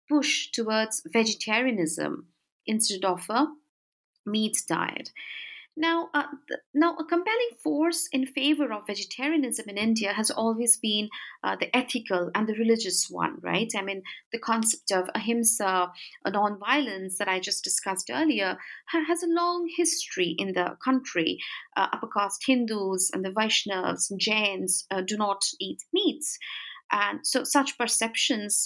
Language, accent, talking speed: English, Indian, 145 wpm